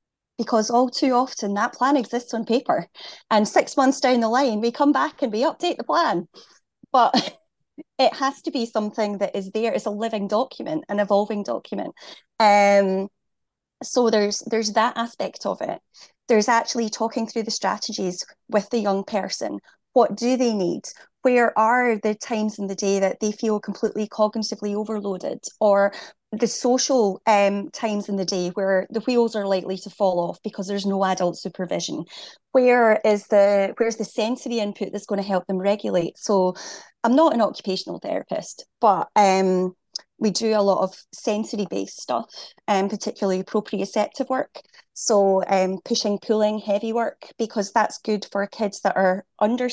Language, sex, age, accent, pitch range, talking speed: English, female, 30-49, British, 200-235 Hz, 175 wpm